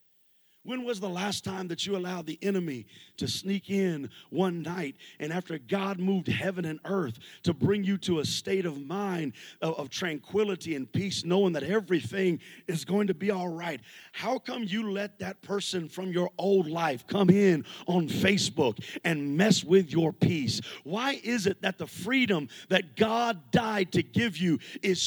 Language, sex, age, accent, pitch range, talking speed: English, male, 40-59, American, 185-265 Hz, 180 wpm